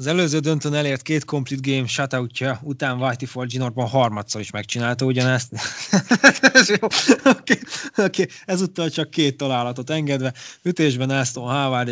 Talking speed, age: 140 wpm, 20-39